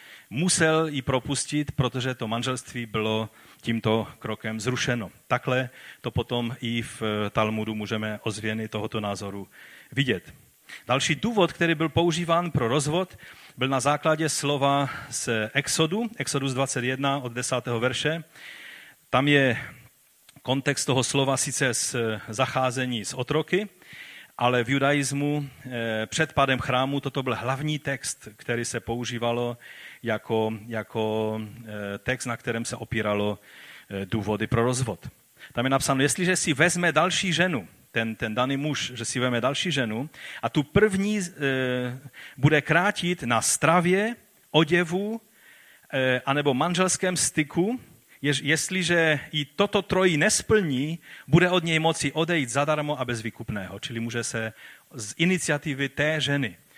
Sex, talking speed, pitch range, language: male, 125 wpm, 115-155 Hz, Czech